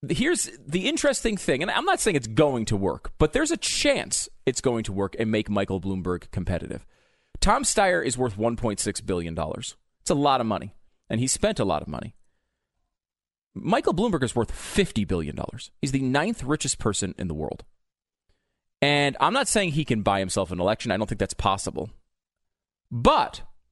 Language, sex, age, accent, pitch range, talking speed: English, male, 40-59, American, 95-140 Hz, 185 wpm